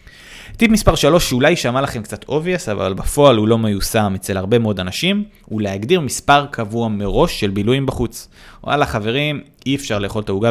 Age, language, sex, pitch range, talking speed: 20-39, Hebrew, male, 105-145 Hz, 185 wpm